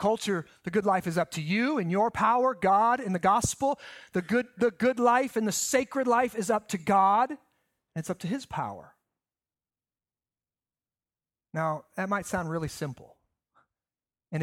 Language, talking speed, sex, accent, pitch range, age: English, 170 wpm, male, American, 160-225 Hz, 30-49